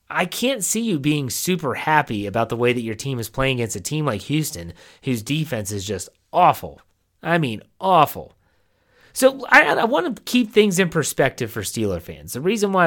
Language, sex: English, male